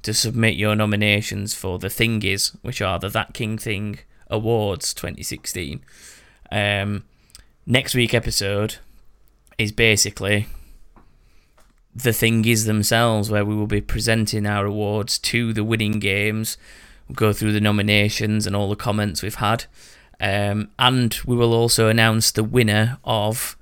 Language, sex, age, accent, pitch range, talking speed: English, male, 20-39, British, 105-120 Hz, 140 wpm